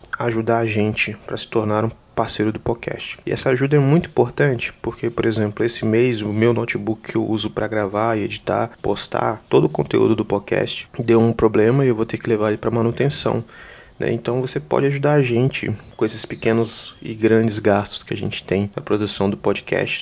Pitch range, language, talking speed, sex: 105-120 Hz, Portuguese, 205 wpm, male